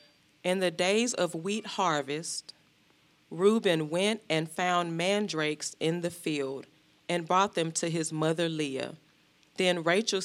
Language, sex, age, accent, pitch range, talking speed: English, female, 30-49, American, 155-195 Hz, 135 wpm